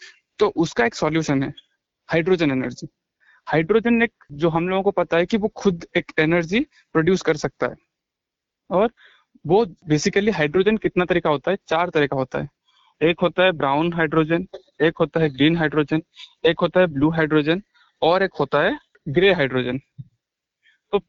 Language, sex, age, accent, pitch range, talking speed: Hindi, male, 20-39, native, 155-200 Hz, 165 wpm